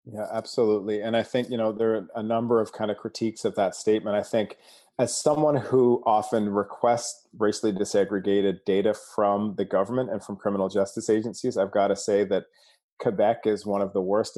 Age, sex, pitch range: 30-49, male, 100-120 Hz